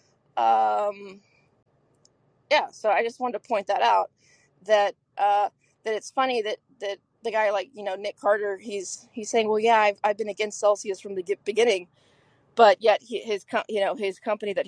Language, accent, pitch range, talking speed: English, American, 195-240 Hz, 190 wpm